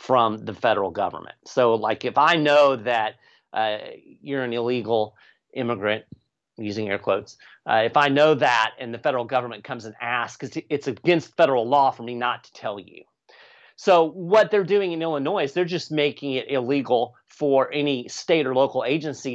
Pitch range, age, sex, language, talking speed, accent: 115-150 Hz, 40-59, male, English, 180 wpm, American